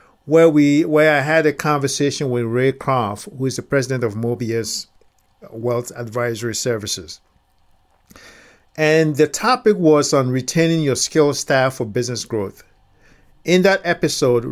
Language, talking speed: English, 140 wpm